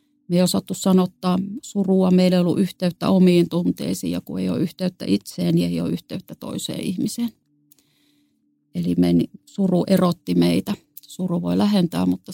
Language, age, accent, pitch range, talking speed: Finnish, 30-49, native, 165-190 Hz, 155 wpm